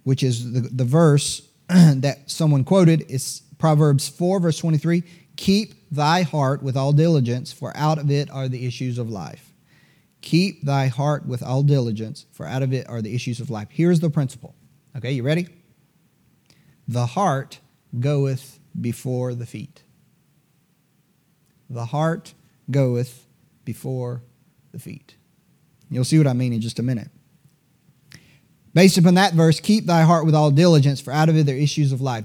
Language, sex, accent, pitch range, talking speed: English, male, American, 130-160 Hz, 165 wpm